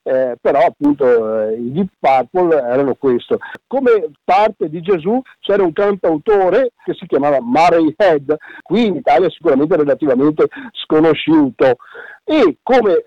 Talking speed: 140 wpm